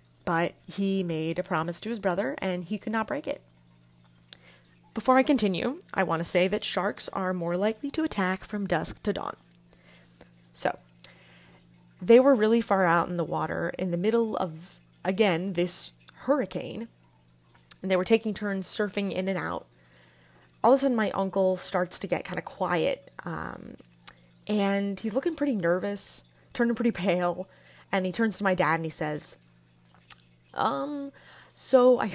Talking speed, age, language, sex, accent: 170 wpm, 20-39, English, female, American